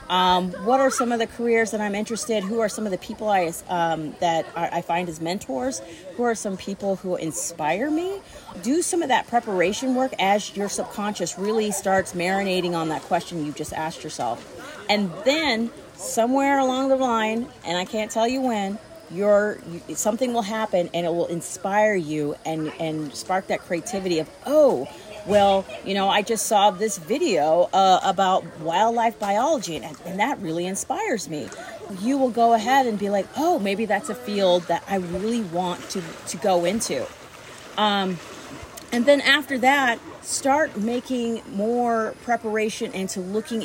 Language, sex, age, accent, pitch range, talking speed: English, female, 30-49, American, 175-225 Hz, 175 wpm